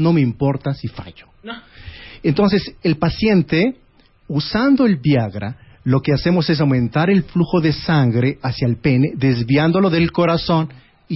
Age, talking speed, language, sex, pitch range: 40-59, 145 wpm, Spanish, male, 120-160 Hz